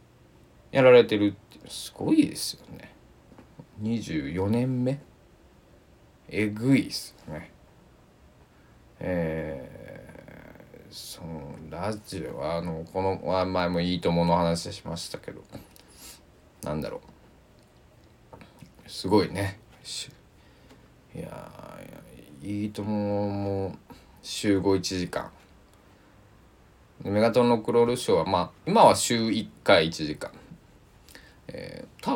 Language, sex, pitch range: Japanese, male, 85-110 Hz